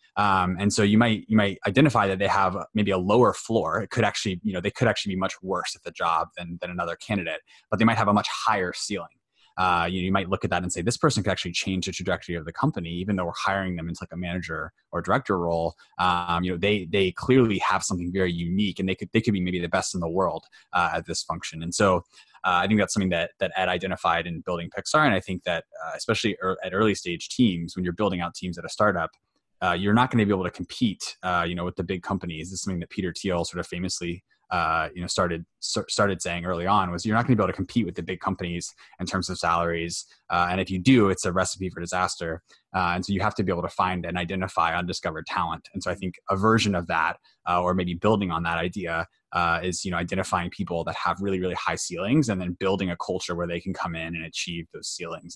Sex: male